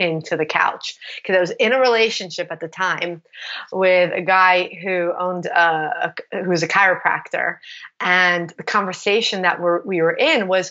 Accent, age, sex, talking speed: American, 30-49, female, 180 wpm